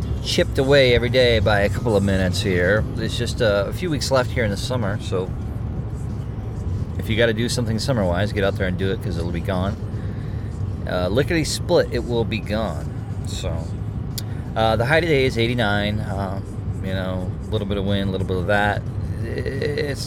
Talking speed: 200 wpm